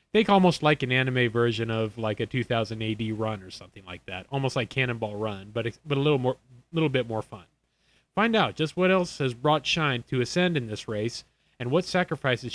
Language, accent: English, American